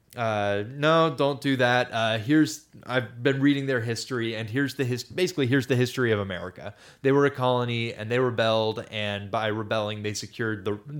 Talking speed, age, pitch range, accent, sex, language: 190 wpm, 20-39, 105-135 Hz, American, male, English